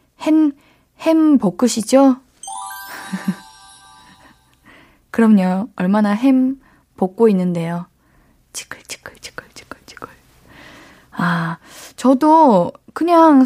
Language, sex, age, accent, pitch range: Korean, female, 20-39, native, 190-290 Hz